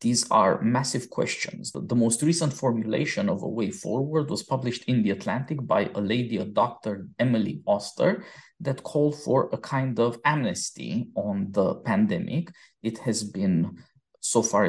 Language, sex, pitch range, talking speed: English, male, 115-170 Hz, 160 wpm